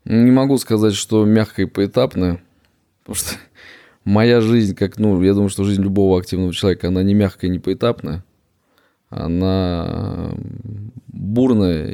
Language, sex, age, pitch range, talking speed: Russian, male, 20-39, 95-110 Hz, 140 wpm